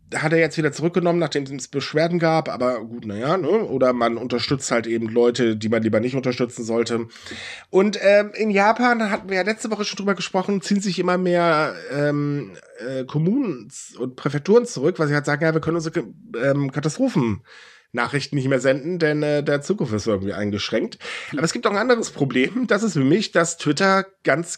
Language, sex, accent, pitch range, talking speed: German, male, German, 140-190 Hz, 205 wpm